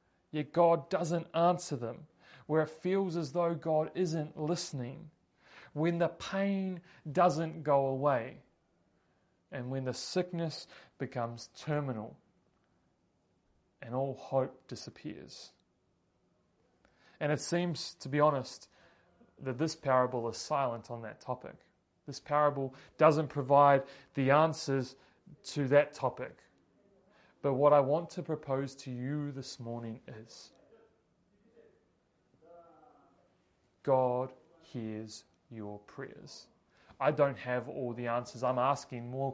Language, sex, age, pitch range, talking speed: English, male, 30-49, 125-160 Hz, 115 wpm